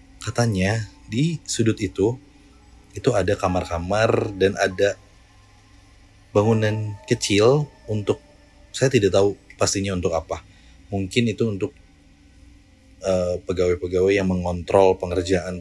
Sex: male